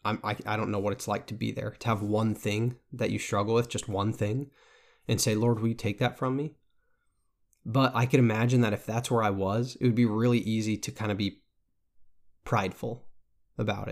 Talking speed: 220 wpm